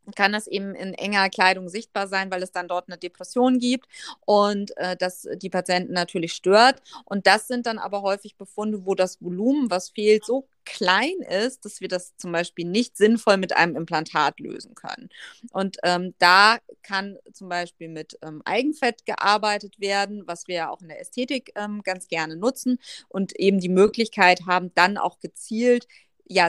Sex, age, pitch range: female, 30-49, 175-225 Hz